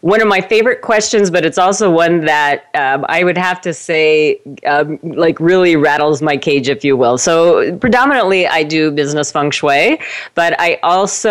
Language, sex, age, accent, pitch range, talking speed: English, female, 40-59, American, 140-170 Hz, 185 wpm